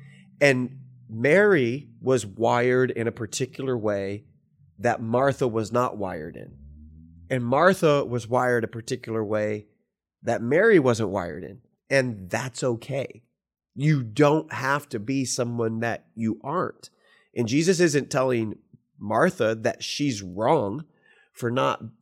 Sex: male